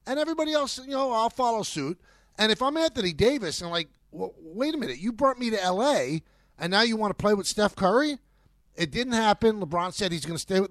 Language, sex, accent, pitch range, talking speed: English, male, American, 155-210 Hz, 240 wpm